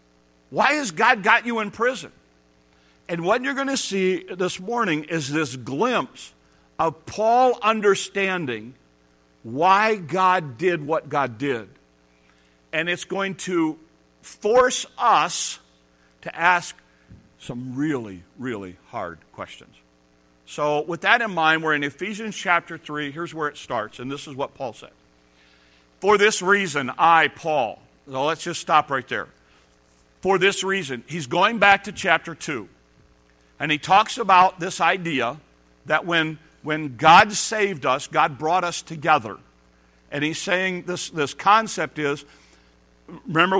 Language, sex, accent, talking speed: English, male, American, 145 wpm